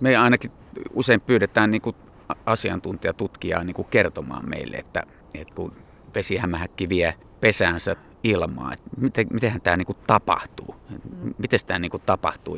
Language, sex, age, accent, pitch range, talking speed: Finnish, male, 30-49, native, 85-100 Hz, 115 wpm